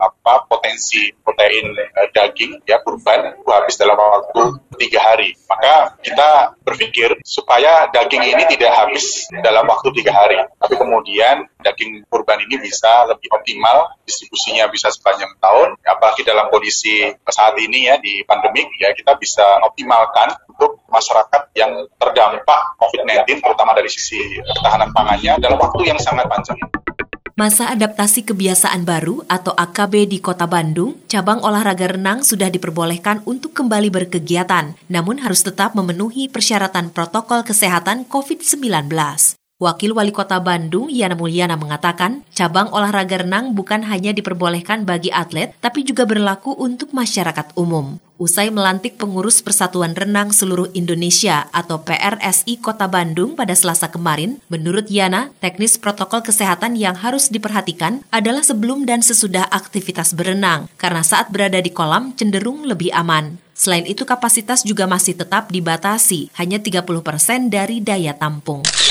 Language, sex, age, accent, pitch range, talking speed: Indonesian, male, 30-49, native, 175-220 Hz, 135 wpm